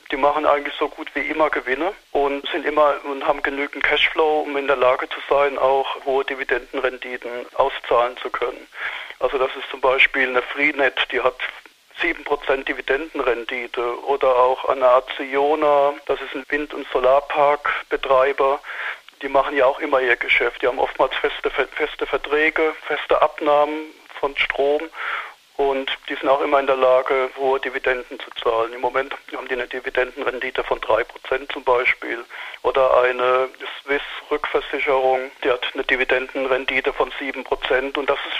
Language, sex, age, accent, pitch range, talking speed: German, male, 40-59, German, 130-145 Hz, 155 wpm